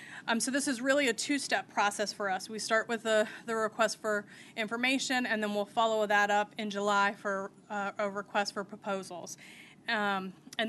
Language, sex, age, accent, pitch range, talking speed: English, female, 30-49, American, 205-235 Hz, 190 wpm